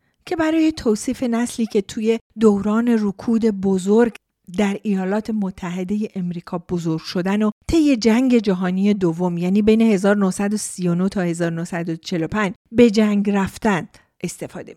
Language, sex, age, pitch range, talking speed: Persian, female, 40-59, 190-235 Hz, 120 wpm